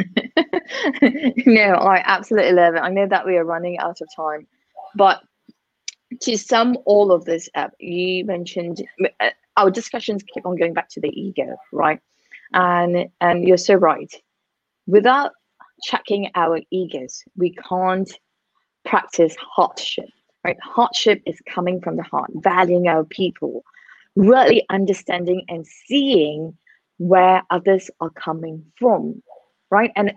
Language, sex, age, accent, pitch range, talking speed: English, female, 20-39, British, 175-230 Hz, 135 wpm